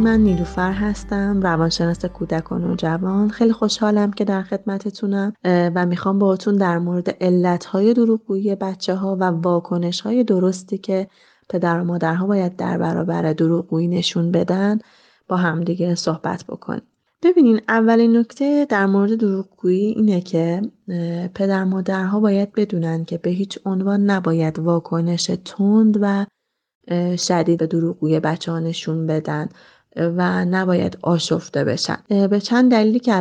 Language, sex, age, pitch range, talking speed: Persian, female, 20-39, 170-205 Hz, 135 wpm